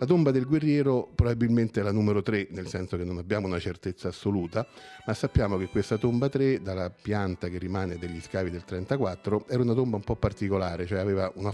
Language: Italian